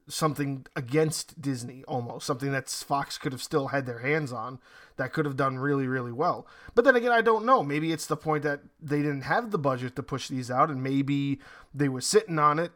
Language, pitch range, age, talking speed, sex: English, 135-160 Hz, 20-39, 225 wpm, male